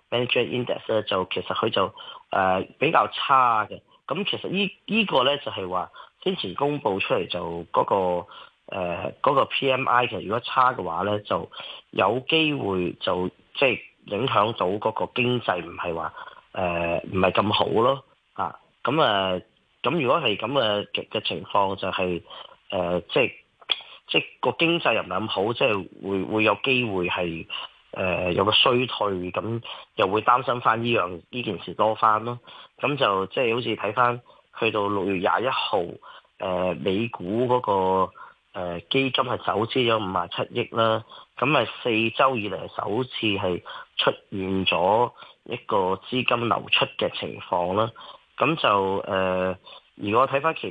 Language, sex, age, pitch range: Chinese, male, 30-49, 95-130 Hz